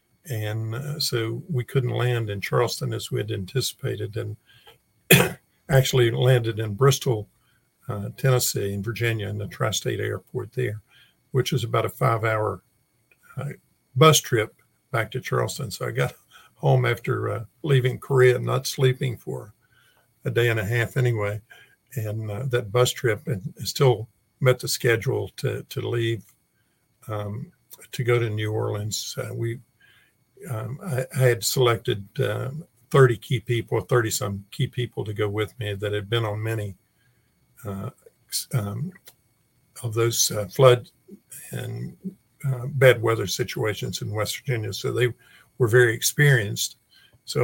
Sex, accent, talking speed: male, American, 145 wpm